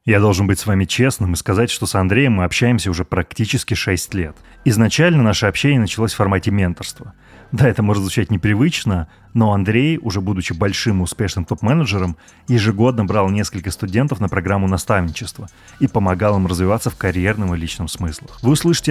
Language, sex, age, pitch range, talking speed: Russian, male, 20-39, 95-120 Hz, 180 wpm